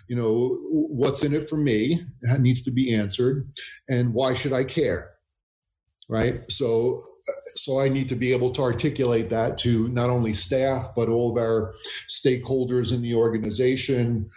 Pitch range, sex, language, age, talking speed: 110-130 Hz, male, English, 40-59, 165 wpm